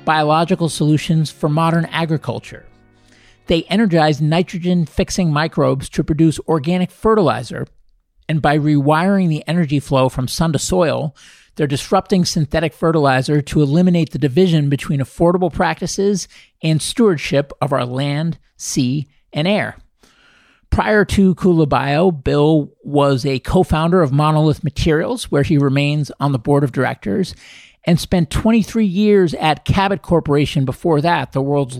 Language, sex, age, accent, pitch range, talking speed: English, male, 50-69, American, 140-180 Hz, 135 wpm